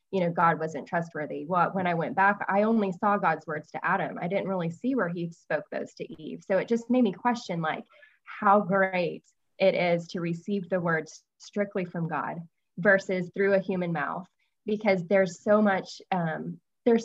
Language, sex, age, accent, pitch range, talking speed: English, female, 20-39, American, 170-200 Hz, 195 wpm